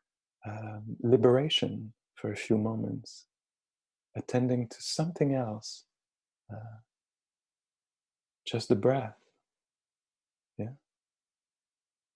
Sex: male